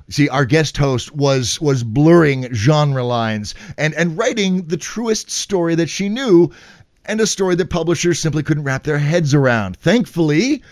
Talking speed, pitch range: 170 wpm, 135-180 Hz